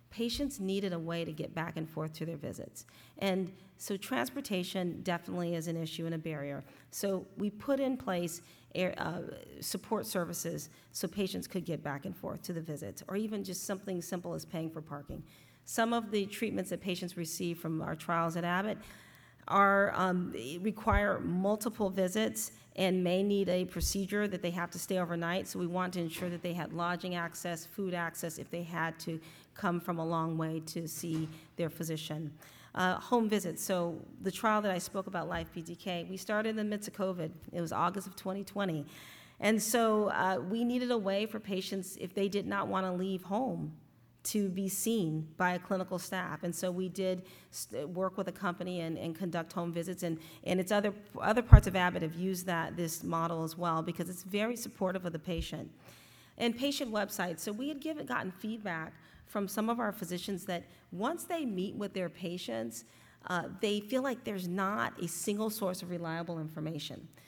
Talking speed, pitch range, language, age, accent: 195 wpm, 170-200 Hz, English, 40-59, American